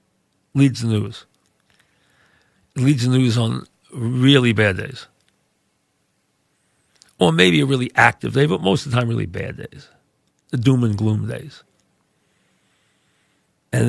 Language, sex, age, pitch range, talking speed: English, male, 50-69, 105-140 Hz, 130 wpm